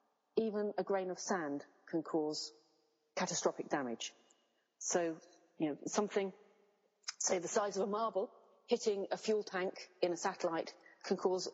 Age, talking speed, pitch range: 40-59, 145 wpm, 170-200 Hz